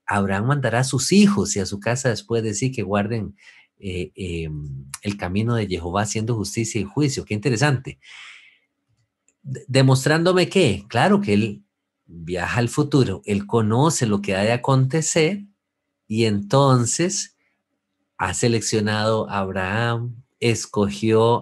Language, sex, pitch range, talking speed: English, male, 100-135 Hz, 135 wpm